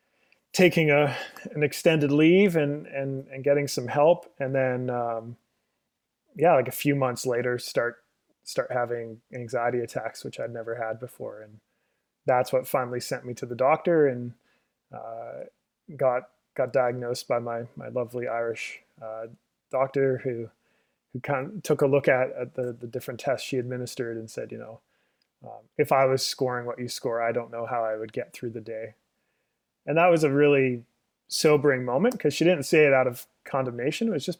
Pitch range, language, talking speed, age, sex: 120-145 Hz, English, 185 wpm, 20-39, male